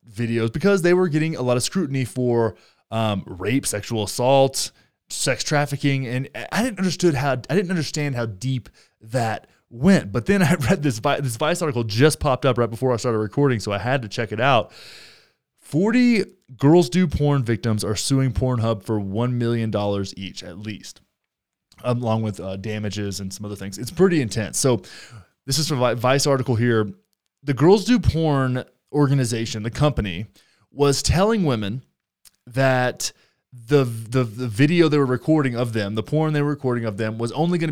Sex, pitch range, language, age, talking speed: male, 110-145 Hz, English, 20-39, 185 wpm